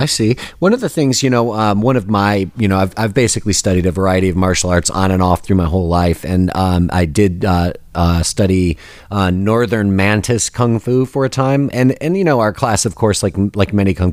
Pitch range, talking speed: 95-115 Hz, 240 wpm